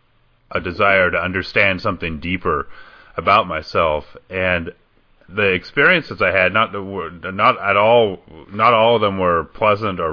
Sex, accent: male, American